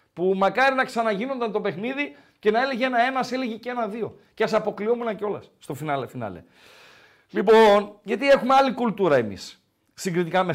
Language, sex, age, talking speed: Greek, male, 50-69, 160 wpm